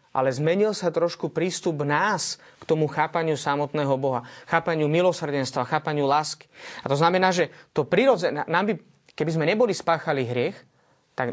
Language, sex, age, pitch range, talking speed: Slovak, male, 30-49, 140-170 Hz, 155 wpm